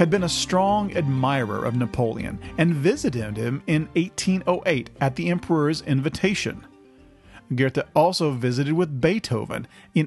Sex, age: male, 40-59